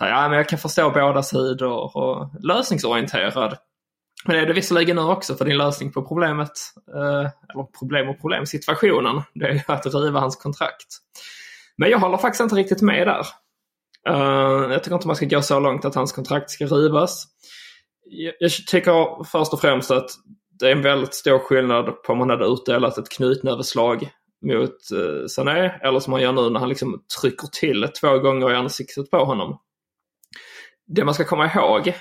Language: Swedish